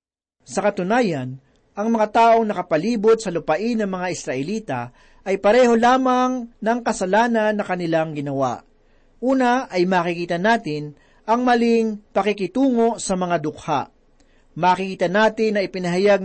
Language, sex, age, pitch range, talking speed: Filipino, male, 40-59, 180-230 Hz, 120 wpm